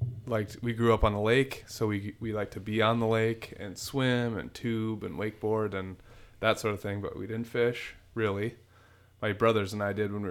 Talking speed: 225 wpm